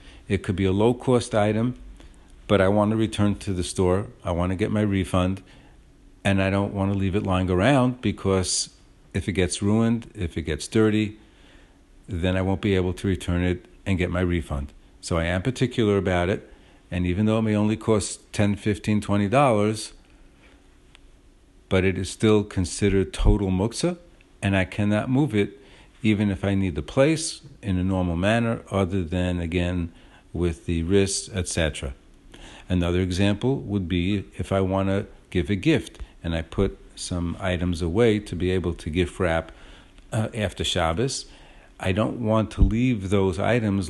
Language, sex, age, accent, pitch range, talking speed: English, male, 50-69, American, 90-105 Hz, 175 wpm